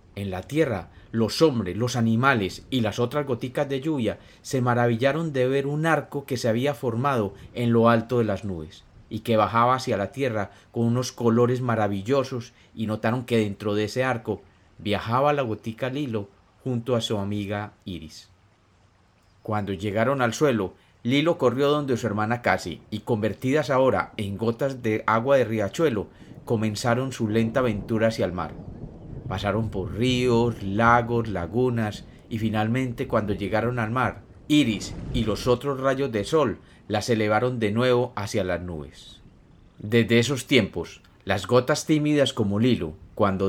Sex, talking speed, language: male, 160 wpm, Spanish